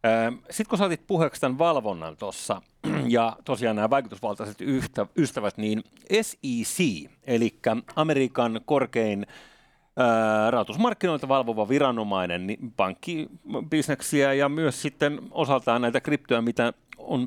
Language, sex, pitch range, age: Finnish, male, 115-155 Hz, 30-49